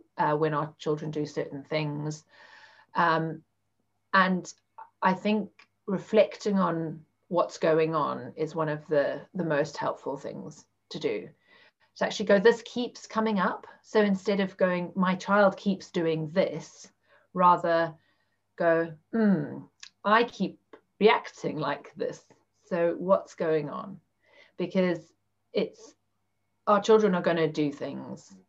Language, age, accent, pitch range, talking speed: English, 40-59, British, 155-205 Hz, 130 wpm